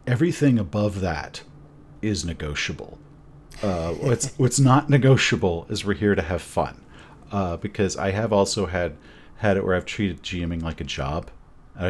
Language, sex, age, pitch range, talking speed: English, male, 40-59, 80-100 Hz, 160 wpm